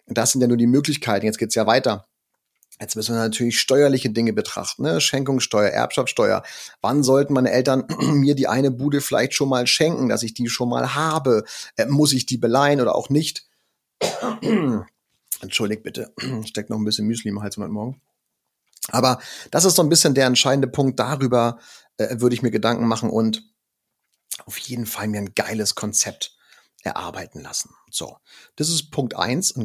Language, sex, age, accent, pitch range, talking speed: German, male, 30-49, German, 110-145 Hz, 180 wpm